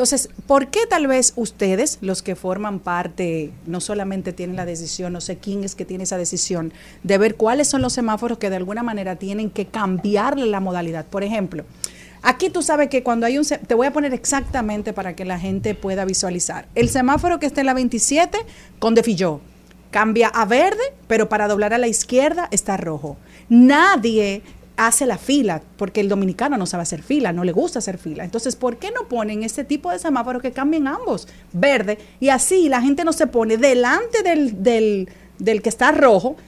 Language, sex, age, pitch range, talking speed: Spanish, female, 40-59, 195-275 Hz, 200 wpm